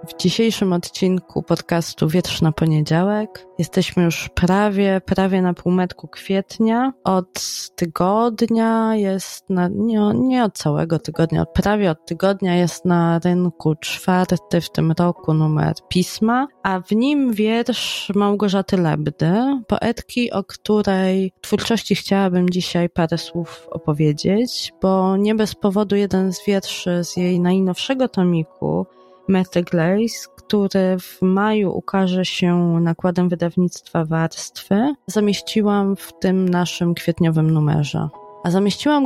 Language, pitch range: Polish, 170-200 Hz